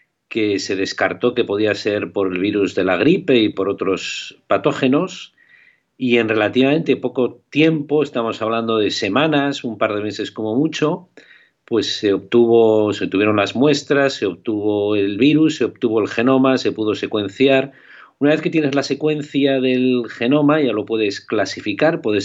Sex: male